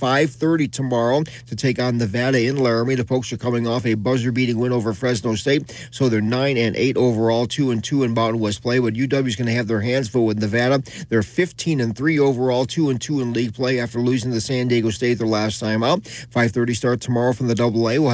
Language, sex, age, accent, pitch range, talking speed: English, male, 40-59, American, 115-135 Hz, 220 wpm